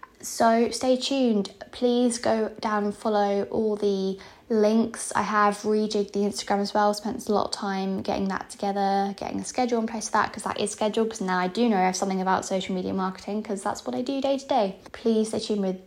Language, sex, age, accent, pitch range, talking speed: English, female, 10-29, British, 195-225 Hz, 230 wpm